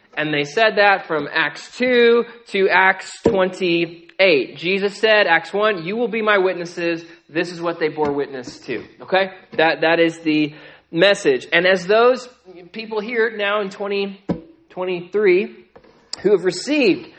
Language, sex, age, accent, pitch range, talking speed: English, male, 20-39, American, 140-200 Hz, 150 wpm